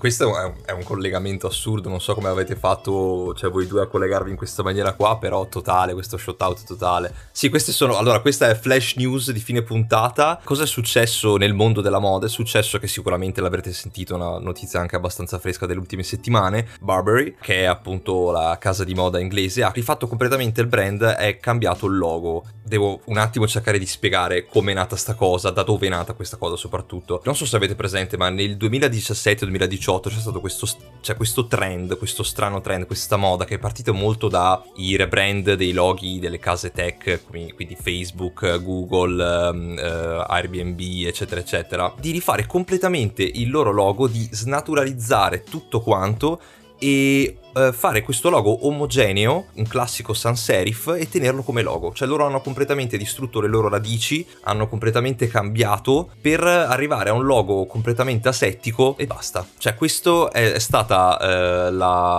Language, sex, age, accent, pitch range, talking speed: Italian, male, 20-39, native, 95-120 Hz, 175 wpm